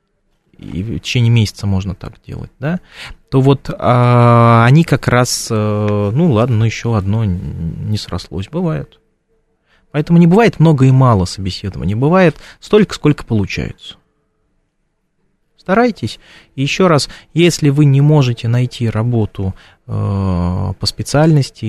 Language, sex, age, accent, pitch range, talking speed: Russian, male, 20-39, native, 105-145 Hz, 125 wpm